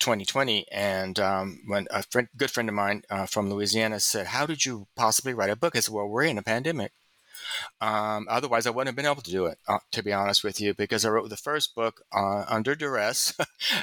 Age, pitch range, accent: 30-49, 100-115 Hz, American